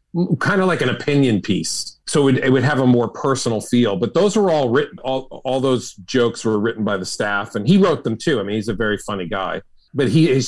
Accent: American